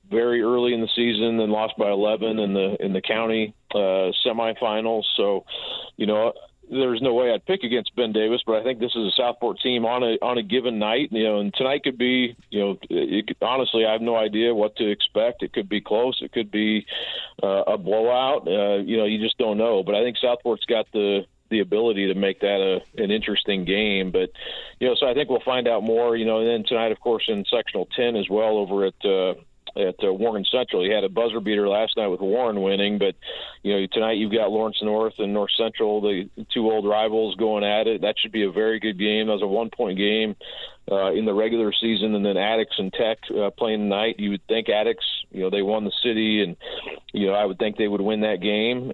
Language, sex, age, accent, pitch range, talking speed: English, male, 40-59, American, 100-115 Hz, 235 wpm